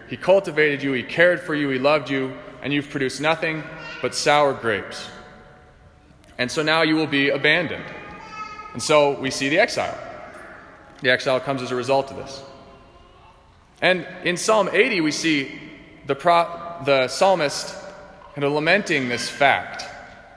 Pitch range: 140-175 Hz